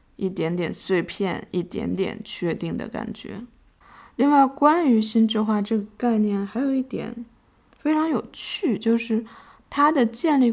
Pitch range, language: 190-235 Hz, Chinese